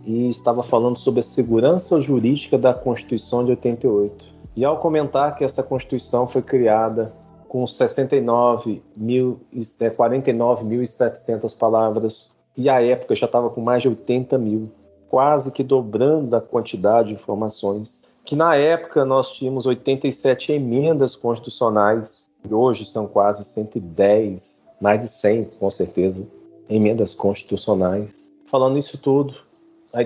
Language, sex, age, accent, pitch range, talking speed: Portuguese, male, 40-59, Brazilian, 110-140 Hz, 125 wpm